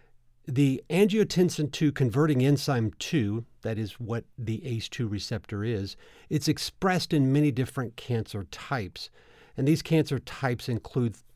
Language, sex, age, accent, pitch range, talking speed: English, male, 50-69, American, 110-150 Hz, 130 wpm